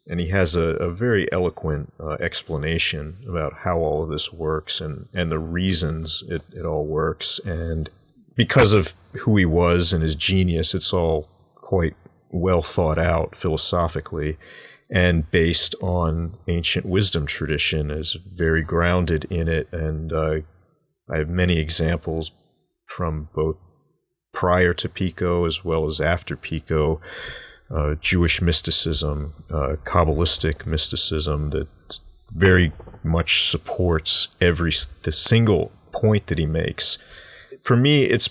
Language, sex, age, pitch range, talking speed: English, male, 40-59, 80-95 Hz, 135 wpm